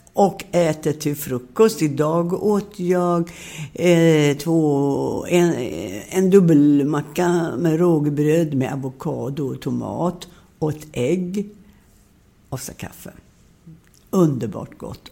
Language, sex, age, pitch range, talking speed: Swedish, female, 60-79, 135-175 Hz, 105 wpm